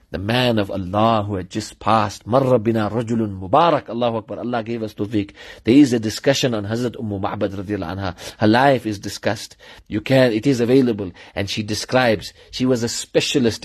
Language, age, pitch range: English, 40-59, 105-135 Hz